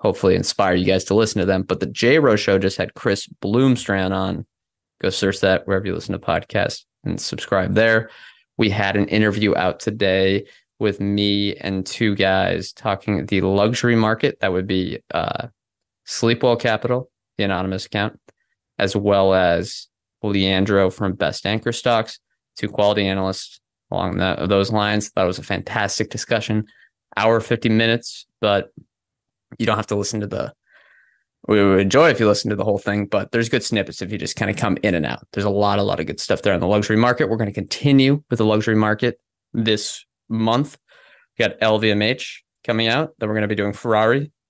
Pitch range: 100-115 Hz